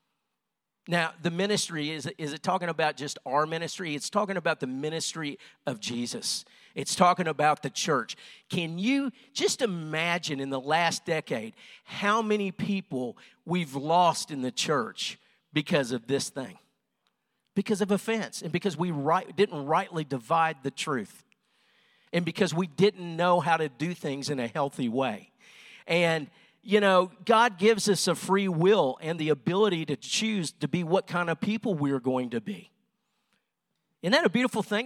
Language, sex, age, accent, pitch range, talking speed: English, male, 50-69, American, 155-205 Hz, 165 wpm